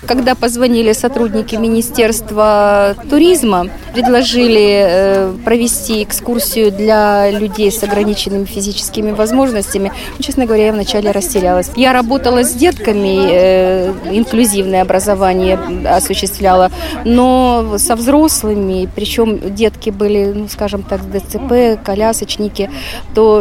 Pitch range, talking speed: 190-220 Hz, 95 wpm